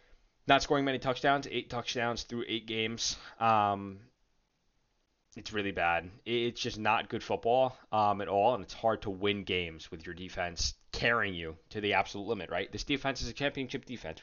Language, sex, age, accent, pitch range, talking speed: English, male, 20-39, American, 95-120 Hz, 180 wpm